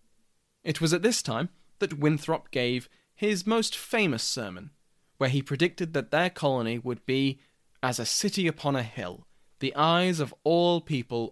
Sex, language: male, English